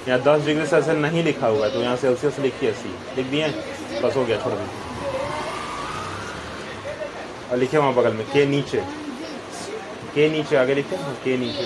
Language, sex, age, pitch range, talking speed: English, male, 20-39, 130-160 Hz, 185 wpm